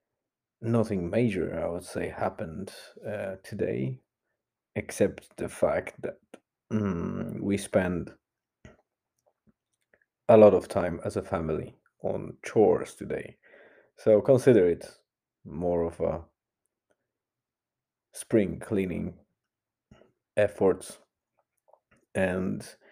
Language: English